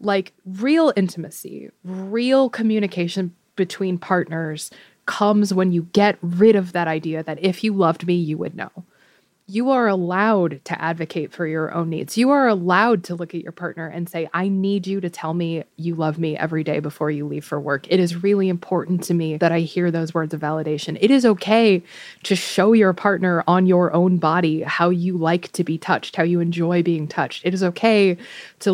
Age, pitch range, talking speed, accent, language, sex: 20-39, 170-200 Hz, 205 wpm, American, English, female